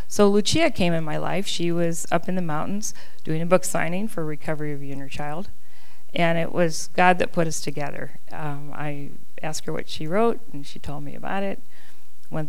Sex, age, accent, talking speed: female, 40-59, American, 210 wpm